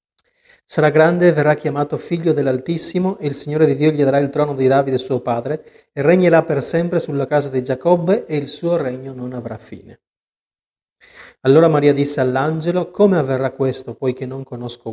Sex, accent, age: male, native, 40-59